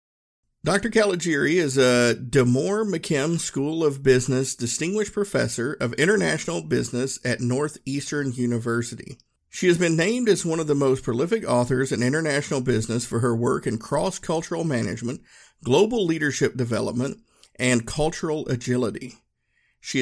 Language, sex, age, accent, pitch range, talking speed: English, male, 50-69, American, 120-150 Hz, 135 wpm